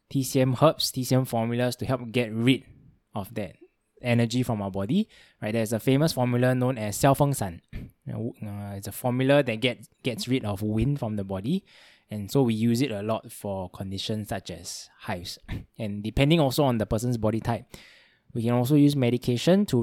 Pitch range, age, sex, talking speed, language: 100-130 Hz, 10-29, male, 190 wpm, English